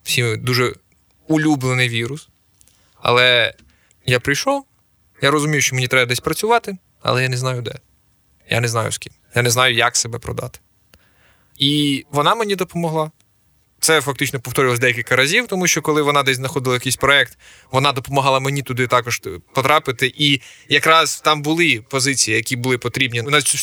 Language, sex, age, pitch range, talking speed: Ukrainian, male, 20-39, 125-150 Hz, 155 wpm